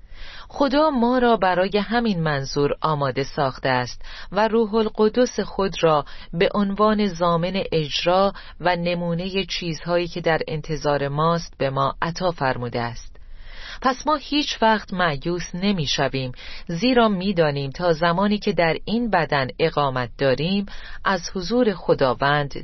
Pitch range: 140-220 Hz